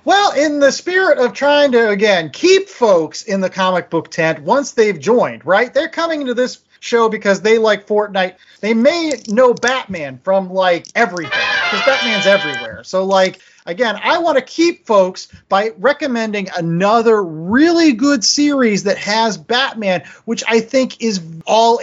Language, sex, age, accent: English, male, 30-49, American